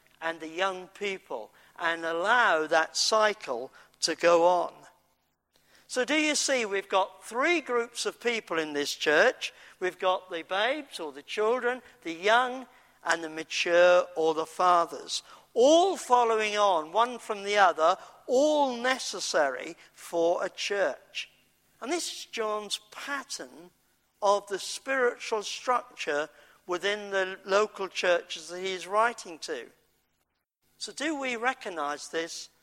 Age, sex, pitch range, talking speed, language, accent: 50-69, male, 165-240 Hz, 135 wpm, English, British